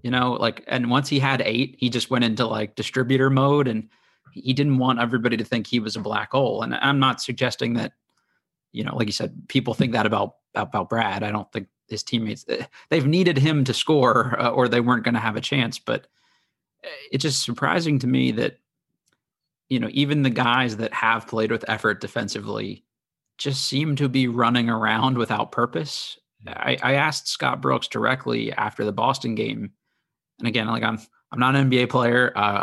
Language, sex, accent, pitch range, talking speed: English, male, American, 115-140 Hz, 195 wpm